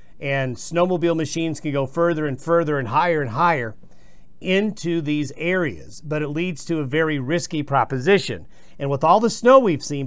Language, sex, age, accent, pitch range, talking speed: English, male, 50-69, American, 140-180 Hz, 180 wpm